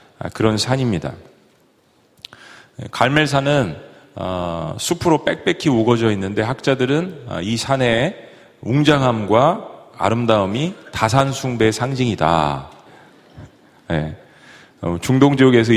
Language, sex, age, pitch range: Korean, male, 40-59, 105-135 Hz